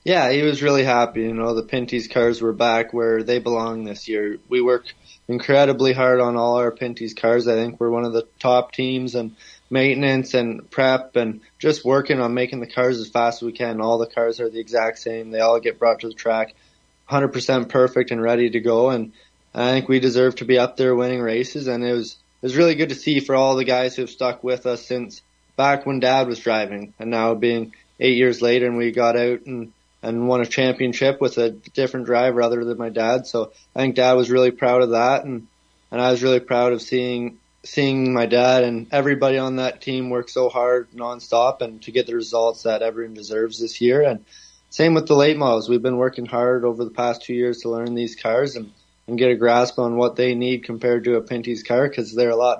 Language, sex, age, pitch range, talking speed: English, male, 20-39, 115-130 Hz, 235 wpm